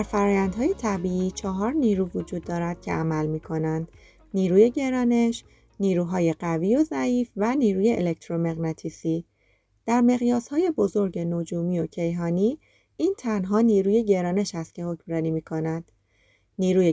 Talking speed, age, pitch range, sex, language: 120 wpm, 30-49, 165-215 Hz, female, Persian